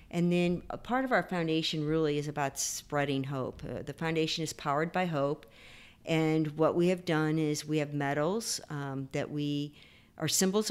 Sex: female